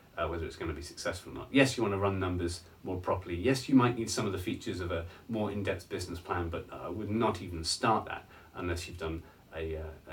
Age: 30-49